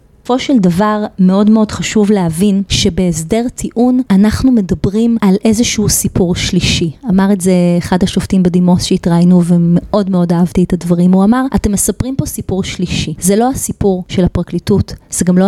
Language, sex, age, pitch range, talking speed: Hebrew, female, 30-49, 180-220 Hz, 165 wpm